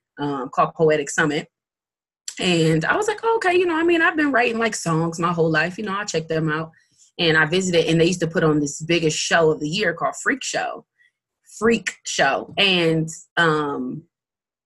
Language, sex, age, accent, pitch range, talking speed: English, female, 20-39, American, 155-205 Hz, 200 wpm